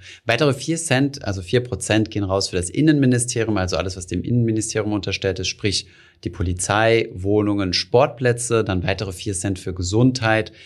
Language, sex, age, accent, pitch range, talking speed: German, male, 30-49, German, 95-120 Hz, 165 wpm